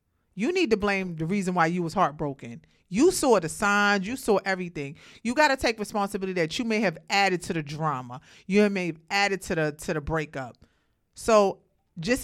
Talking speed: 200 wpm